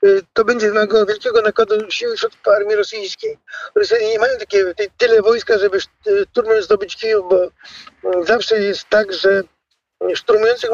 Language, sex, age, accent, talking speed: Polish, male, 50-69, native, 130 wpm